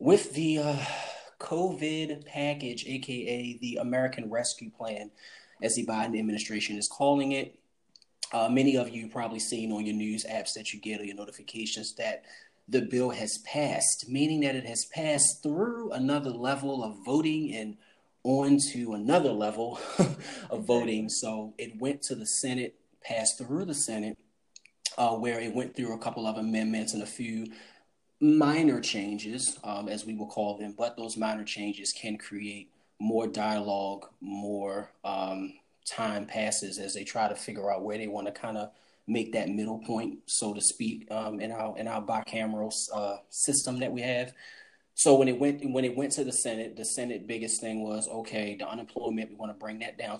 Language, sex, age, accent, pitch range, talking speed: English, male, 30-49, American, 110-130 Hz, 180 wpm